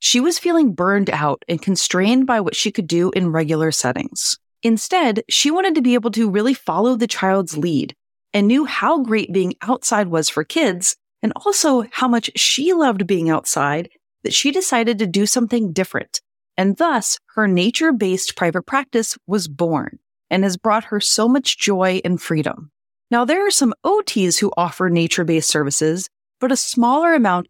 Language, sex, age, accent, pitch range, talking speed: English, female, 30-49, American, 180-250 Hz, 175 wpm